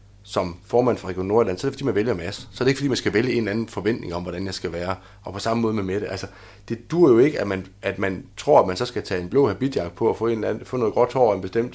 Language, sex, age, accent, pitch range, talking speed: Danish, male, 30-49, native, 95-120 Hz, 315 wpm